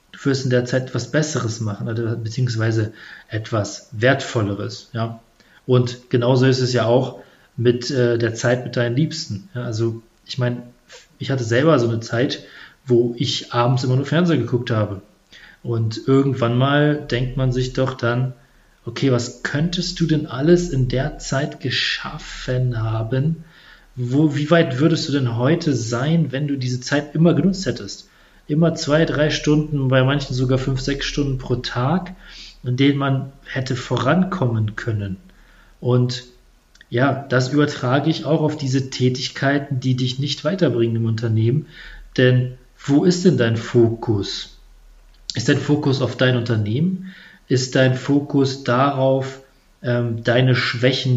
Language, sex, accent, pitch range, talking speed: German, male, German, 120-145 Hz, 145 wpm